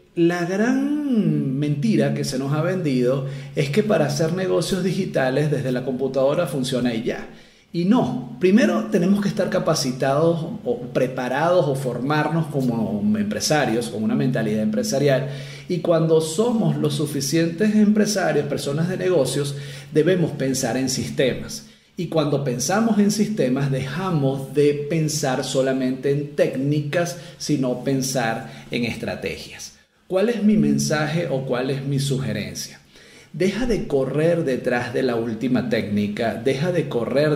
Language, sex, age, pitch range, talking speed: Spanish, male, 40-59, 130-175 Hz, 135 wpm